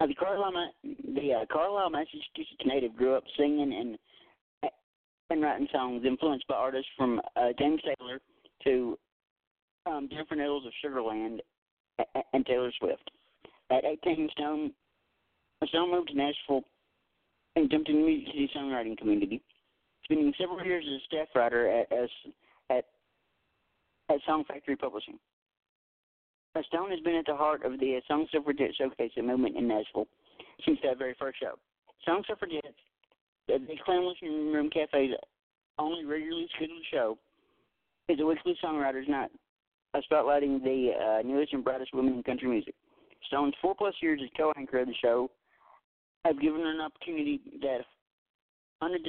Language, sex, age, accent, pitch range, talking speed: English, male, 40-59, American, 130-165 Hz, 155 wpm